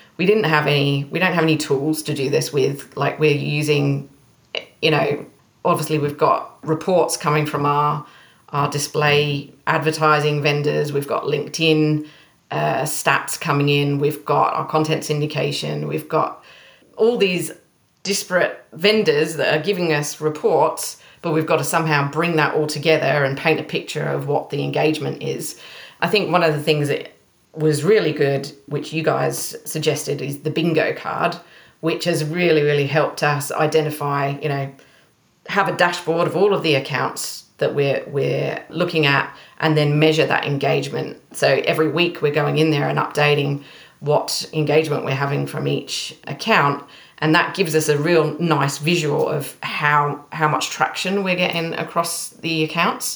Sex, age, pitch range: female, 30-49, 145-165 Hz